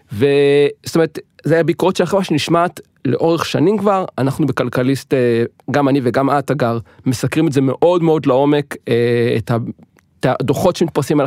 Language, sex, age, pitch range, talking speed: Hebrew, male, 40-59, 130-180 Hz, 145 wpm